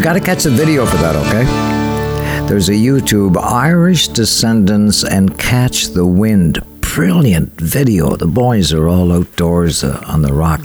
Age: 60-79